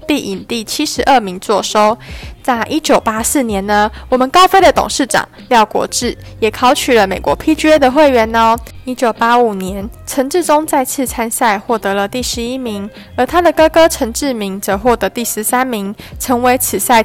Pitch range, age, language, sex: 215-275 Hz, 20-39, Chinese, female